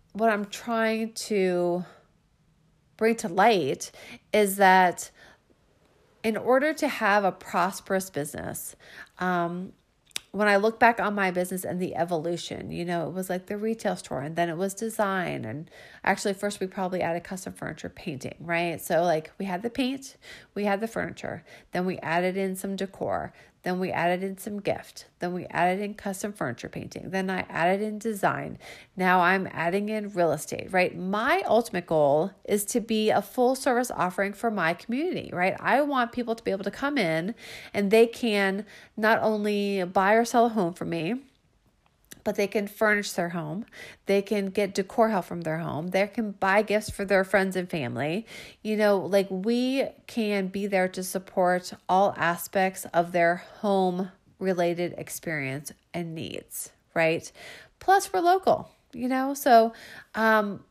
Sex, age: female, 40-59